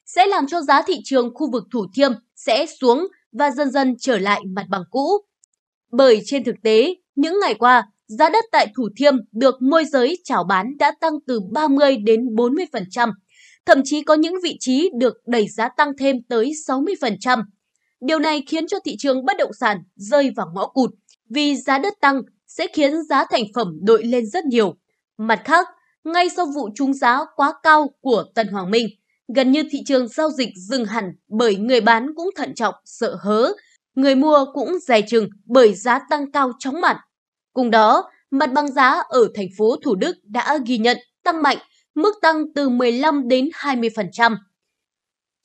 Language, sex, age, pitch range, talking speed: Vietnamese, female, 20-39, 225-300 Hz, 185 wpm